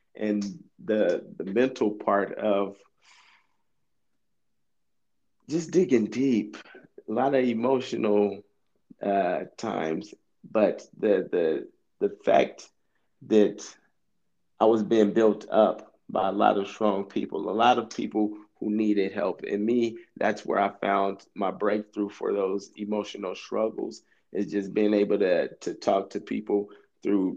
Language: English